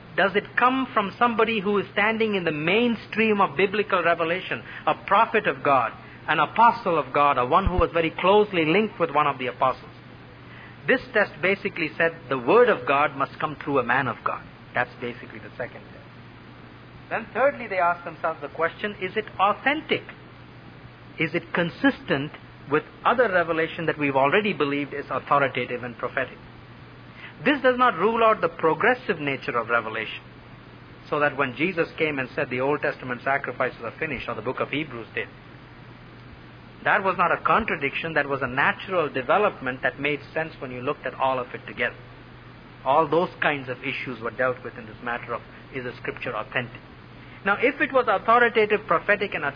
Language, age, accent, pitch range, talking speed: English, 50-69, Indian, 130-200 Hz, 185 wpm